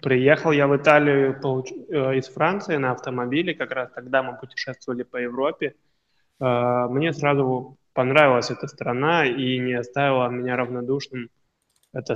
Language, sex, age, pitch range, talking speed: Russian, male, 20-39, 125-135 Hz, 130 wpm